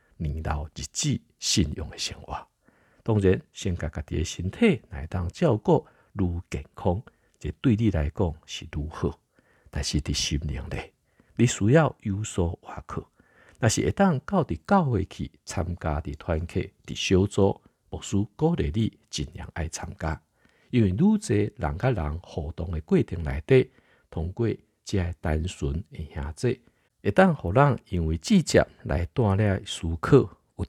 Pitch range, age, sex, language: 80-115 Hz, 60-79, male, Chinese